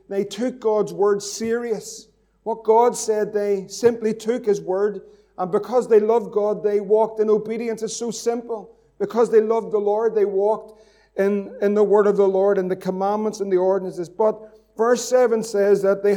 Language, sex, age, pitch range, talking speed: English, male, 50-69, 195-215 Hz, 190 wpm